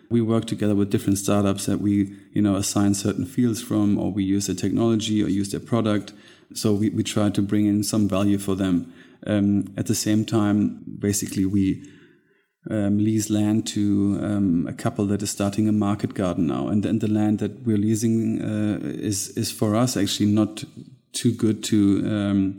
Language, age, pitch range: English, 30-49, 100-110 Hz